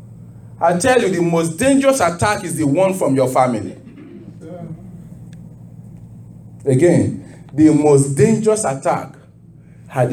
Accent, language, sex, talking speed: Nigerian, English, male, 115 wpm